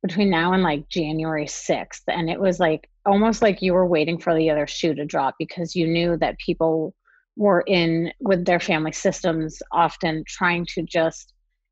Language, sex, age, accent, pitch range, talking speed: English, female, 30-49, American, 165-200 Hz, 185 wpm